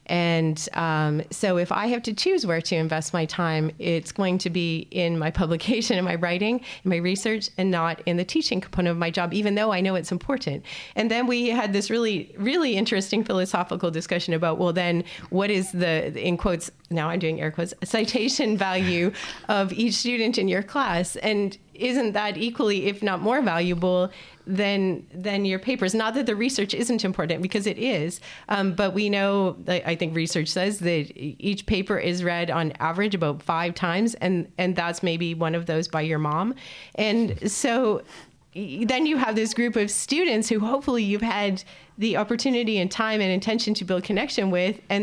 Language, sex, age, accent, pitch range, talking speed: English, female, 30-49, American, 175-215 Hz, 195 wpm